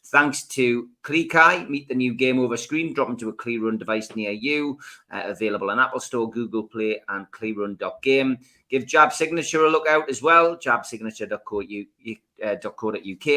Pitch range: 110-140 Hz